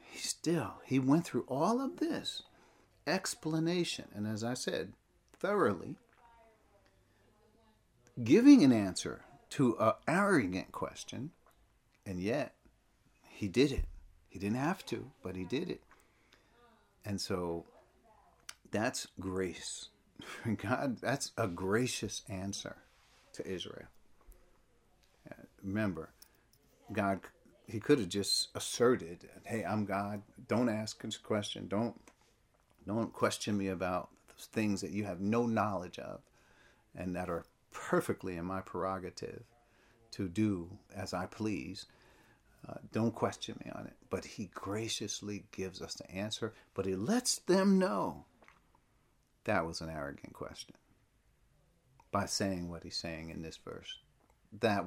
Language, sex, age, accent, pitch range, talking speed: English, male, 50-69, American, 95-120 Hz, 125 wpm